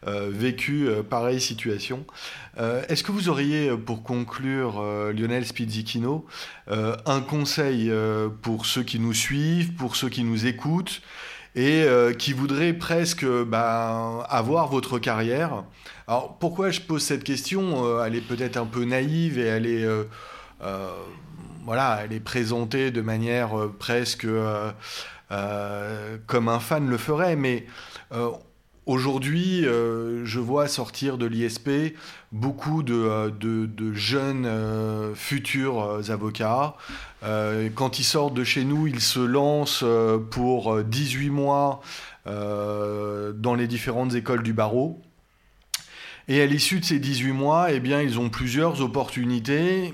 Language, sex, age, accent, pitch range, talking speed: French, male, 30-49, French, 110-140 Hz, 145 wpm